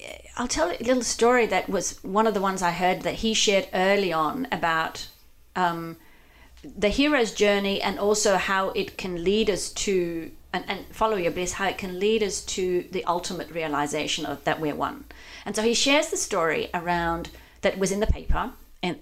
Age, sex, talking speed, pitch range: 40-59, female, 195 wpm, 165-220 Hz